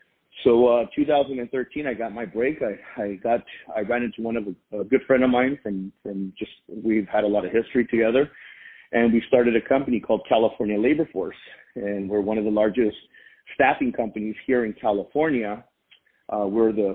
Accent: American